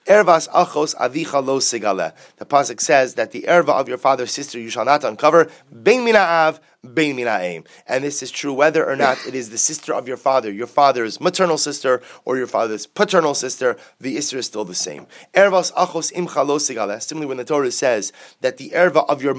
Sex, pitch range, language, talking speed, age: male, 130-170 Hz, English, 165 wpm, 30-49